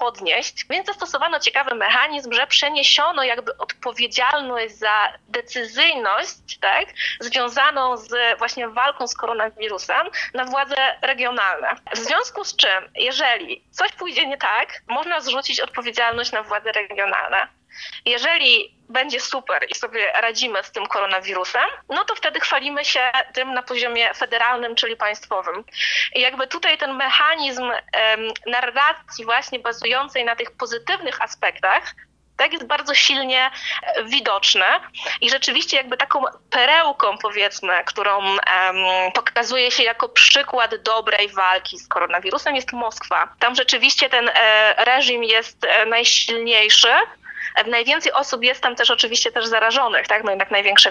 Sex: female